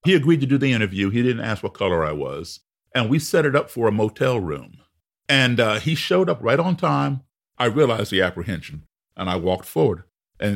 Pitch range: 95-135 Hz